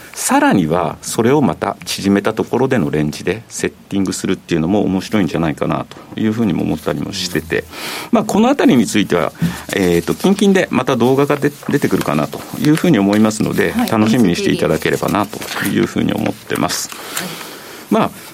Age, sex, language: 50-69, male, Japanese